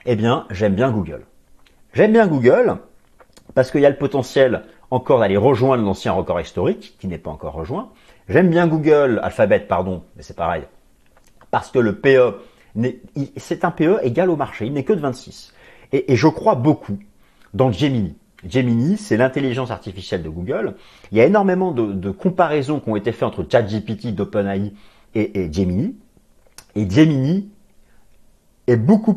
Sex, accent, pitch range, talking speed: male, French, 100-140 Hz, 175 wpm